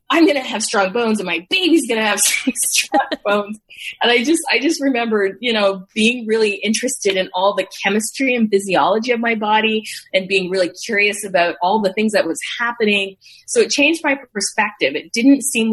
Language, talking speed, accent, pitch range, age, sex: English, 200 wpm, American, 175-235 Hz, 20-39, female